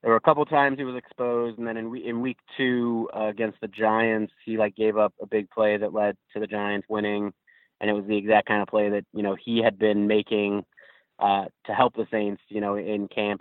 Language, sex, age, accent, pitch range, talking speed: English, male, 20-39, American, 105-110 Hz, 245 wpm